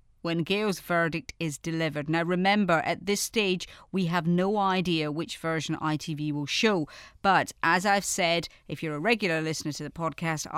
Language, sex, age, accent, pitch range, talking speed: English, female, 30-49, British, 160-205 Hz, 175 wpm